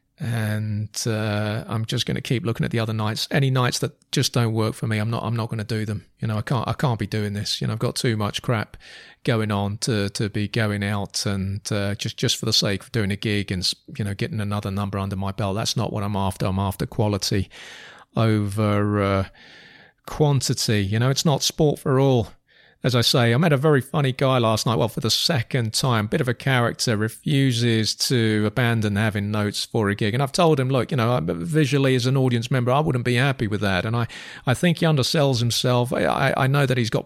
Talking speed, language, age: 240 wpm, English, 30-49